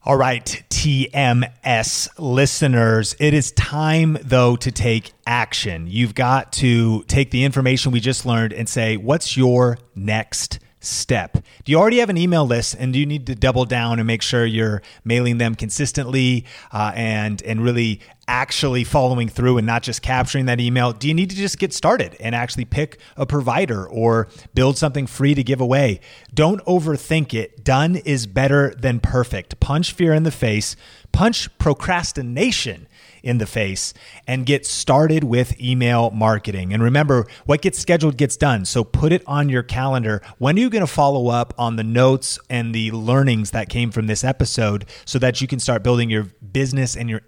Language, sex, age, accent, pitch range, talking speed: English, male, 30-49, American, 115-140 Hz, 180 wpm